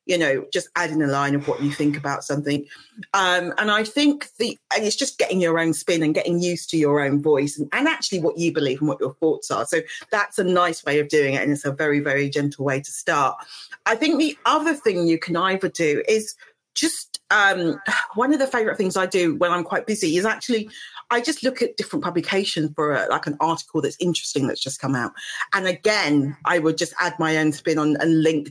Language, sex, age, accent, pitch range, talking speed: English, female, 40-59, British, 150-200 Hz, 235 wpm